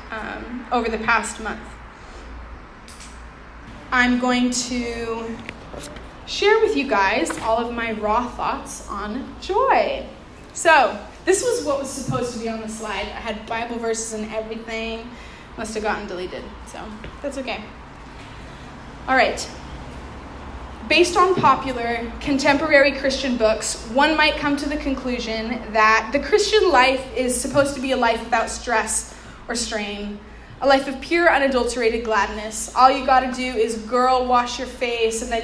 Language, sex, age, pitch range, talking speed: English, female, 20-39, 220-275 Hz, 150 wpm